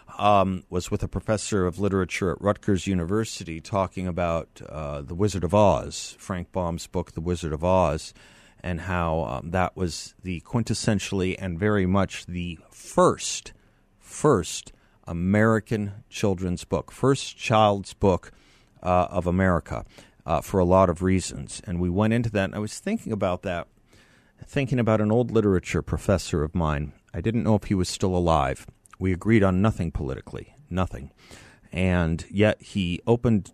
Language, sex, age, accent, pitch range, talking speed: English, male, 50-69, American, 90-105 Hz, 160 wpm